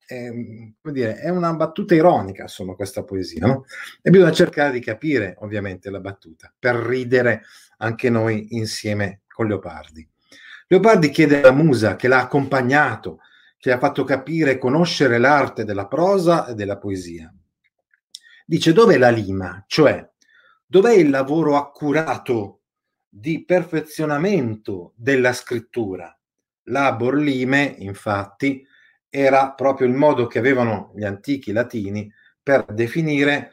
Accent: native